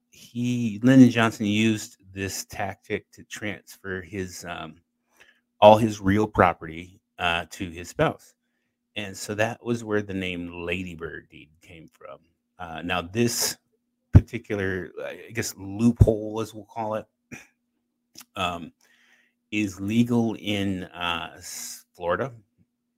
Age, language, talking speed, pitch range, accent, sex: 30-49, English, 120 wpm, 90-110 Hz, American, male